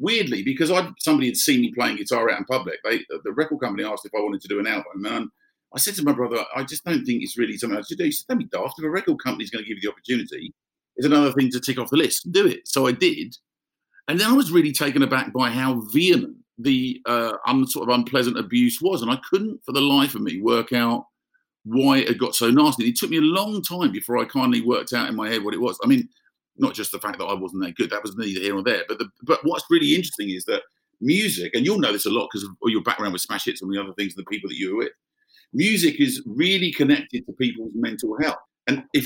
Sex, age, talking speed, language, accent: male, 50-69, 280 wpm, English, British